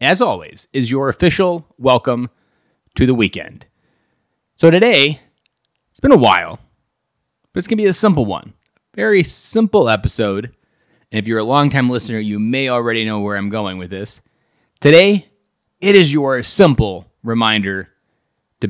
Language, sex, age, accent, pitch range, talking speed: English, male, 30-49, American, 110-150 Hz, 155 wpm